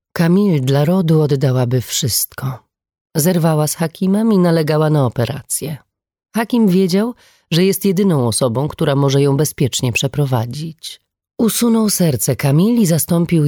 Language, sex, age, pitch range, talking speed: Polish, female, 30-49, 135-190 Hz, 125 wpm